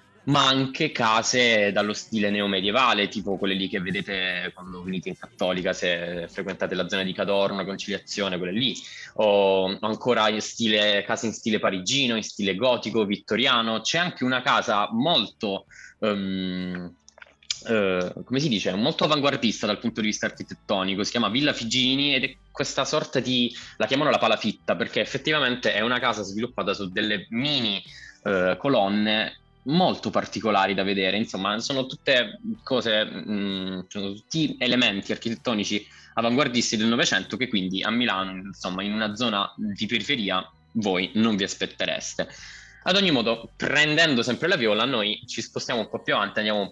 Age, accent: 20-39, native